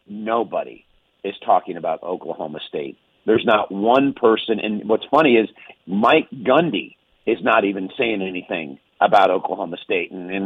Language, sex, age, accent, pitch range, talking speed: English, male, 50-69, American, 125-170 Hz, 150 wpm